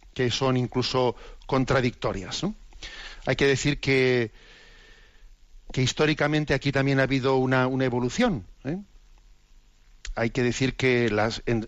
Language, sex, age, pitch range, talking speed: Spanish, male, 50-69, 120-135 Hz, 115 wpm